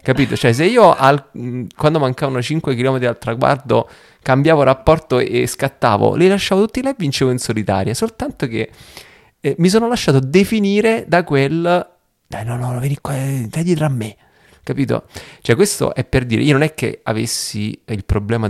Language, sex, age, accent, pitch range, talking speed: Italian, male, 30-49, native, 110-140 Hz, 180 wpm